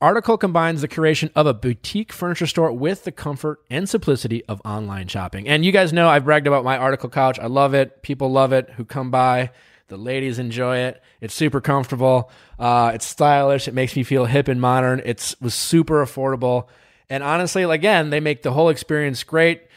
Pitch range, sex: 120-155 Hz, male